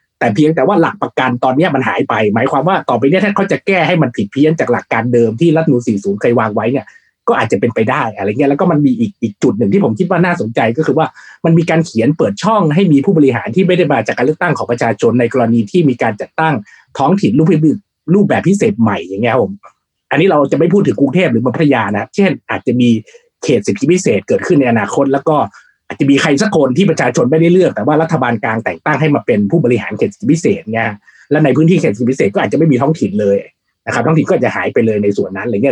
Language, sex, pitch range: Thai, male, 115-165 Hz